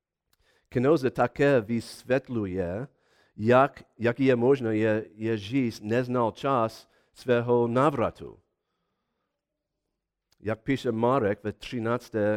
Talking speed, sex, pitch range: 90 wpm, male, 110-135 Hz